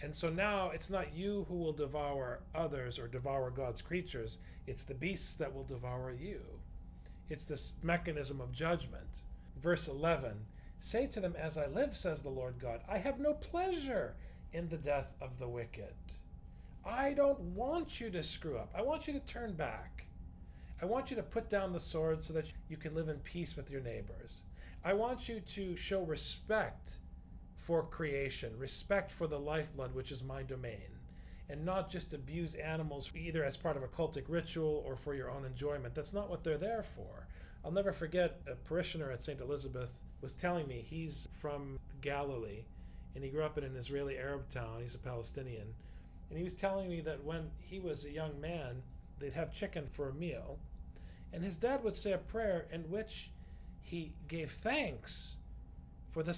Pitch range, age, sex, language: 120-175 Hz, 40-59, male, English